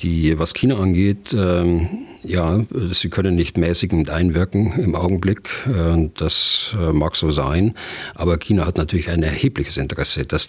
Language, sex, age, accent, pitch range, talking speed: German, male, 50-69, German, 80-95 Hz, 150 wpm